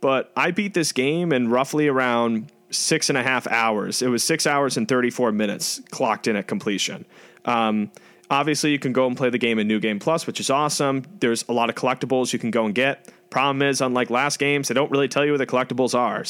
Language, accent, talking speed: English, American, 235 wpm